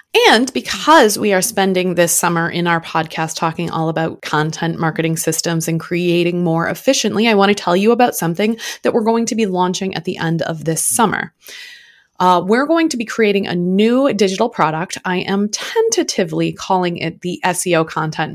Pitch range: 170-215 Hz